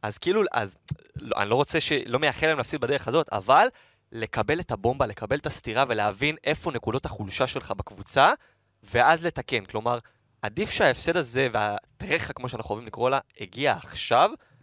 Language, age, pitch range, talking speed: Hebrew, 20-39, 110-150 Hz, 165 wpm